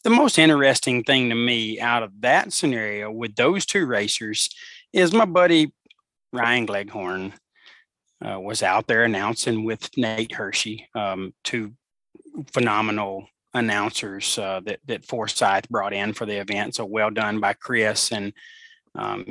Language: English